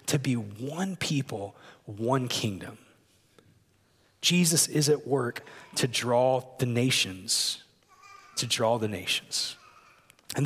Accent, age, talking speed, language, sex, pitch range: American, 30-49, 110 wpm, English, male, 125-160 Hz